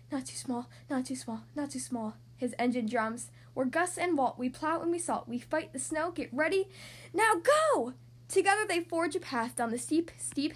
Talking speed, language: 215 wpm, English